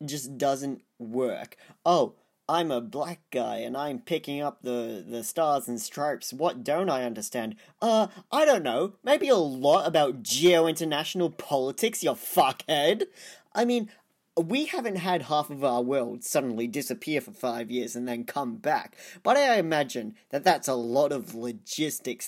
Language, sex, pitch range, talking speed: English, male, 125-180 Hz, 160 wpm